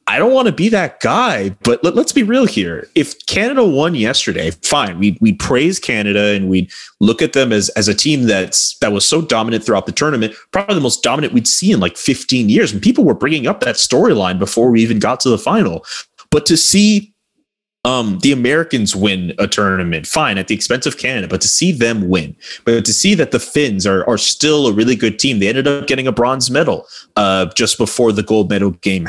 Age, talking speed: 30-49, 225 wpm